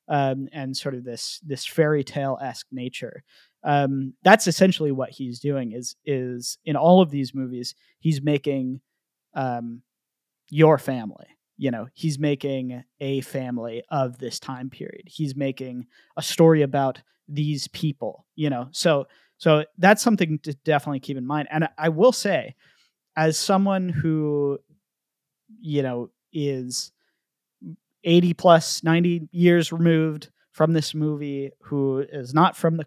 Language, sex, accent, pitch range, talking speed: English, male, American, 135-165 Hz, 145 wpm